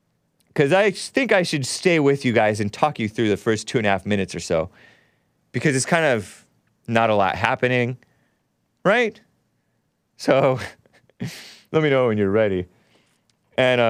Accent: American